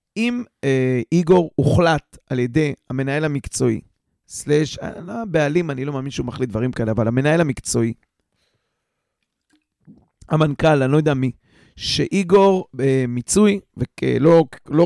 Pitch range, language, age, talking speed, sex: 140-190 Hz, Hebrew, 40-59, 130 wpm, male